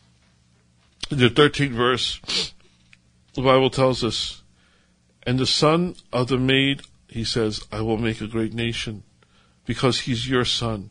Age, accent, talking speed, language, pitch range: 50-69, American, 145 wpm, English, 100-140 Hz